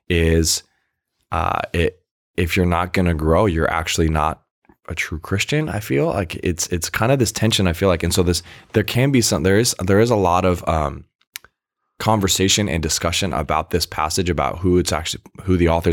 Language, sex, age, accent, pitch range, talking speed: English, male, 20-39, American, 80-95 Hz, 205 wpm